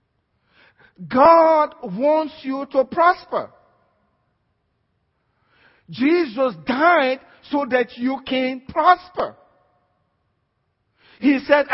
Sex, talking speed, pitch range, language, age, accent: male, 70 wpm, 255-330 Hz, English, 50-69, Nigerian